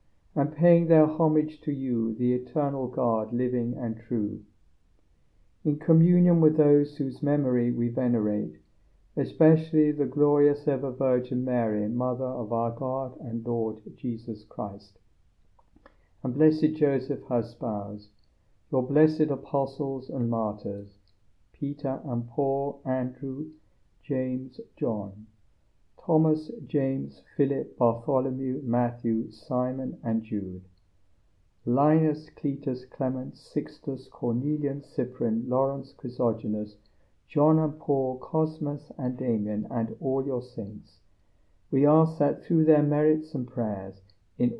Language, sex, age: English, male, 60-79